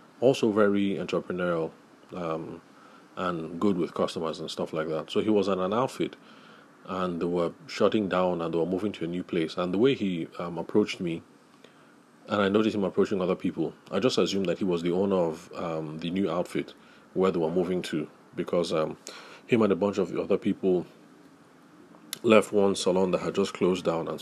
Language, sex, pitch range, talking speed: English, male, 85-100 Hz, 205 wpm